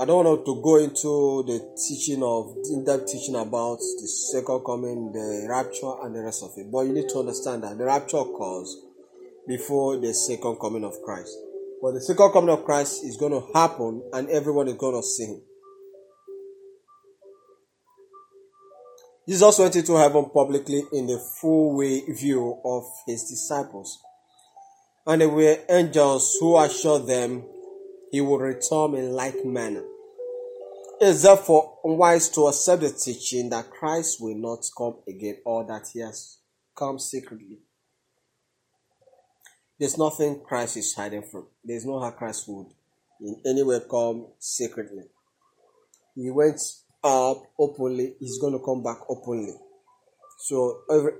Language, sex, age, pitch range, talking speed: English, male, 30-49, 125-190 Hz, 150 wpm